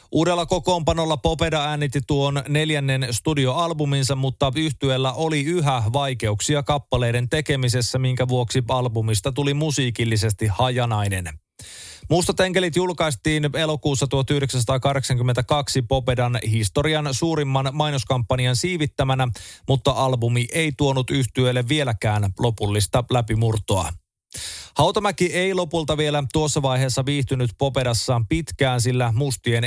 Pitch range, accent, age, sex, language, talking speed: 125-150 Hz, native, 30-49, male, Finnish, 100 wpm